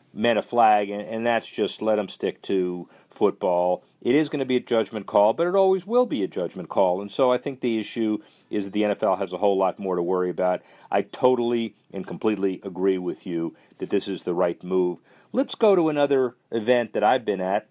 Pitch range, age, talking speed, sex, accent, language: 100-140 Hz, 40-59, 225 wpm, male, American, English